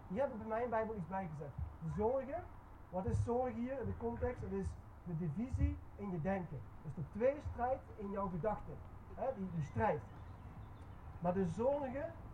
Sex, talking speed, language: male, 180 wpm, Dutch